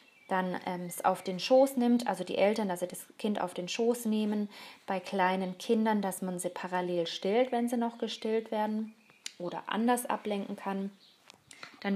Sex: female